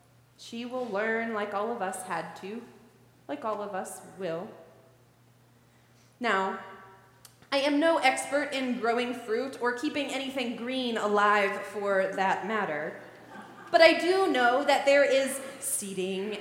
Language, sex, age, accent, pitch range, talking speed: English, female, 30-49, American, 190-255 Hz, 140 wpm